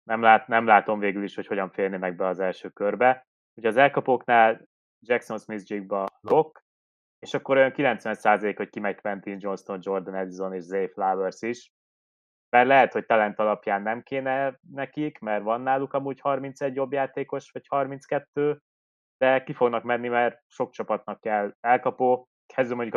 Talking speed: 160 wpm